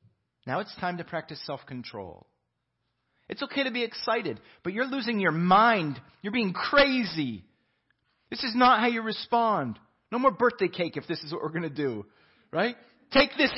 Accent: American